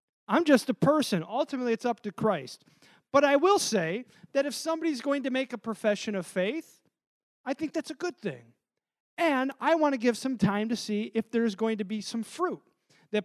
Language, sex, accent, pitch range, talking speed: English, male, American, 175-255 Hz, 210 wpm